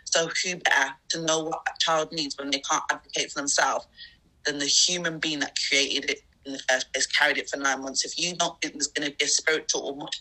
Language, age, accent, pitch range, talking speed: English, 20-39, British, 135-160 Hz, 255 wpm